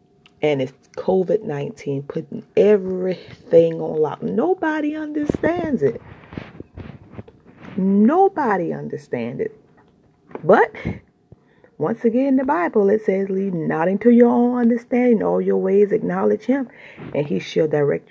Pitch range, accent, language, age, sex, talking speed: 155-220 Hz, American, English, 30-49, female, 115 wpm